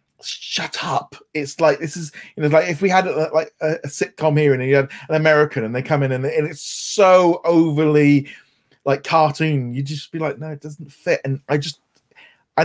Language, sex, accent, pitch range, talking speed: English, male, British, 140-180 Hz, 220 wpm